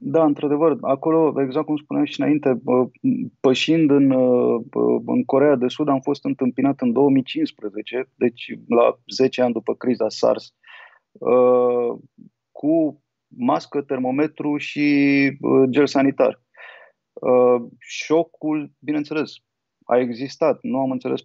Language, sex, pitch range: Romanian, male, 125-155 Hz